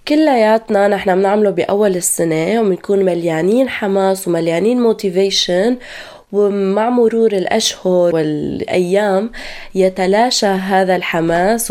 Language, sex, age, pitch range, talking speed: Arabic, female, 20-39, 180-225 Hz, 85 wpm